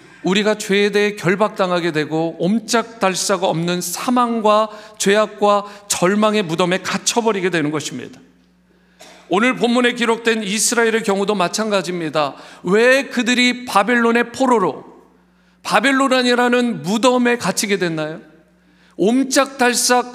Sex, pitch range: male, 180-245 Hz